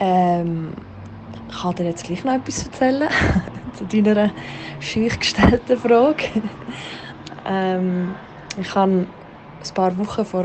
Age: 20-39